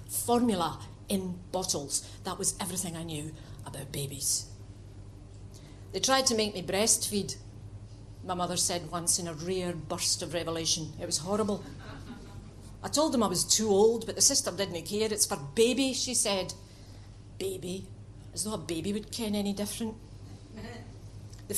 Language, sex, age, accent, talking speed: English, female, 50-69, British, 155 wpm